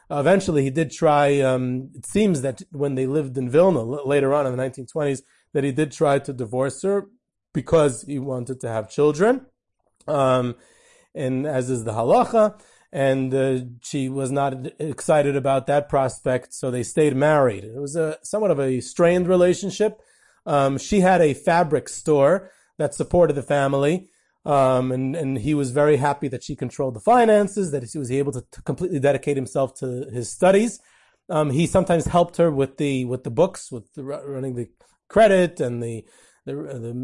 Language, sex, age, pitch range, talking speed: English, male, 30-49, 130-165 Hz, 180 wpm